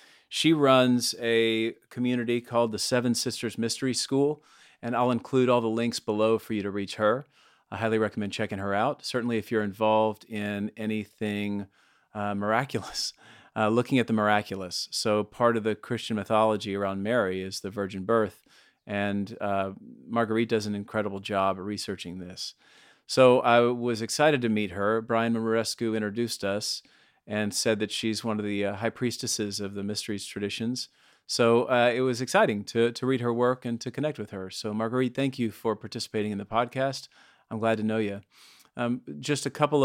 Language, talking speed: English, 180 wpm